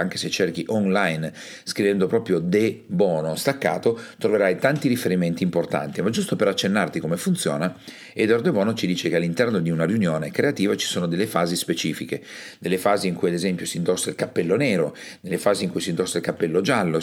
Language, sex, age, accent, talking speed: Italian, male, 40-59, native, 195 wpm